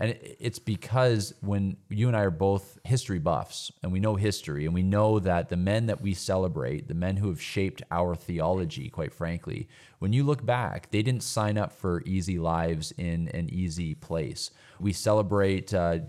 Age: 30-49